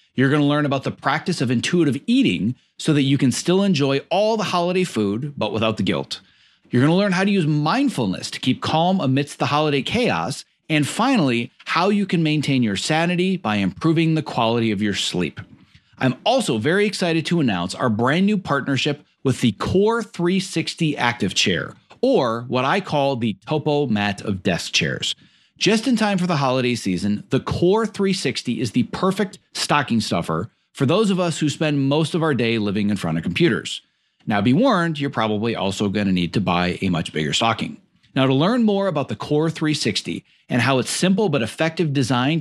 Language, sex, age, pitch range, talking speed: English, male, 40-59, 120-180 Hz, 200 wpm